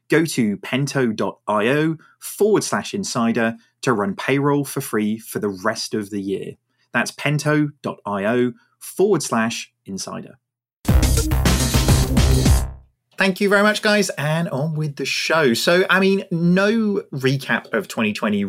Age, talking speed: 30-49, 125 wpm